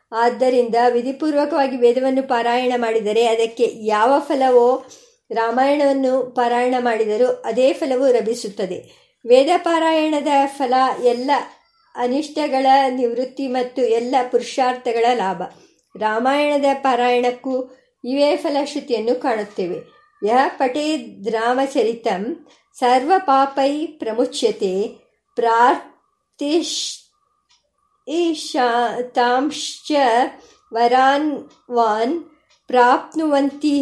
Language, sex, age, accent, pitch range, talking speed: Kannada, male, 50-69, native, 240-300 Hz, 65 wpm